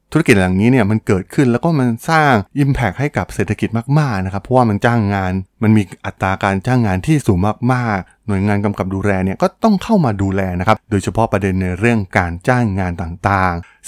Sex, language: male, Thai